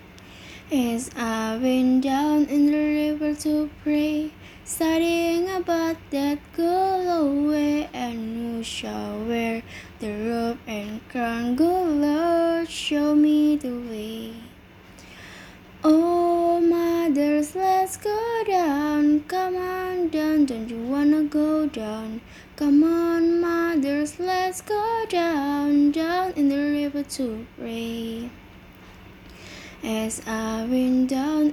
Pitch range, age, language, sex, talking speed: 245-335 Hz, 10-29, Indonesian, female, 110 wpm